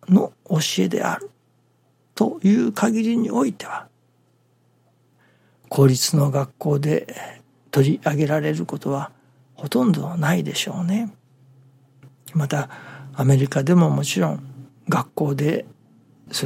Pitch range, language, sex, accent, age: 135-200 Hz, Japanese, male, native, 60-79